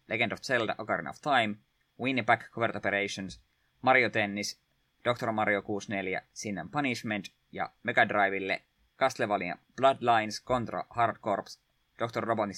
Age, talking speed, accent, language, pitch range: 20-39, 130 wpm, native, Finnish, 100-120 Hz